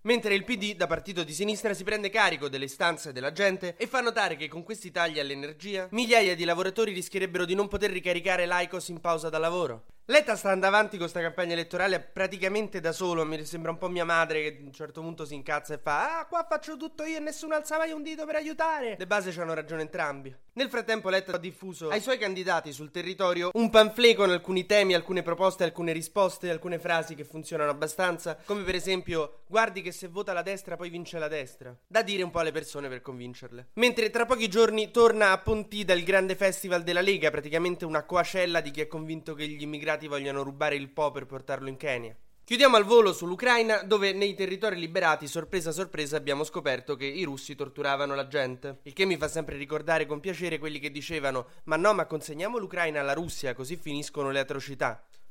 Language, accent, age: Italian, native, 20-39